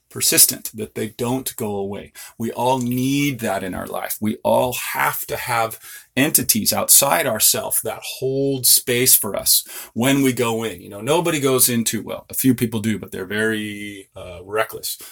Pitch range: 110-135 Hz